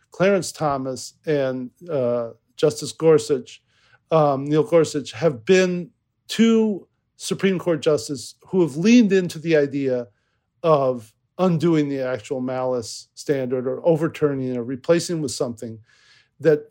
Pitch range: 130-175 Hz